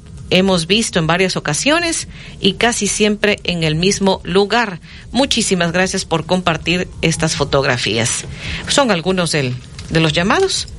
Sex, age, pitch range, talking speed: female, 40-59, 175-220 Hz, 130 wpm